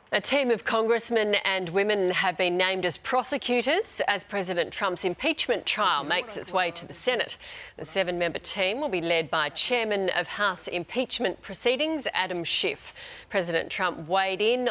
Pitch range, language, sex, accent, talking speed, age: 170-225 Hz, English, female, Australian, 165 wpm, 40-59